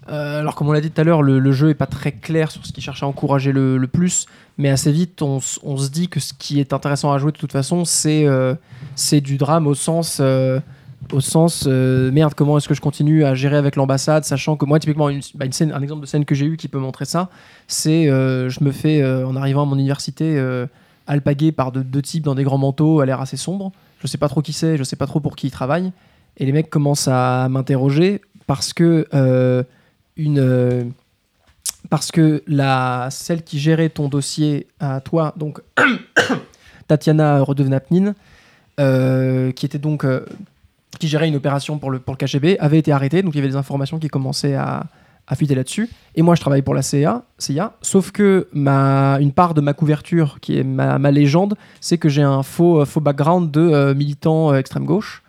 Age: 20-39